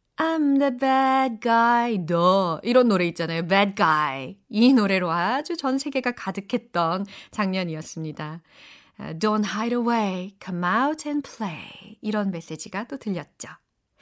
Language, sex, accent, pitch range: Korean, female, native, 185-265 Hz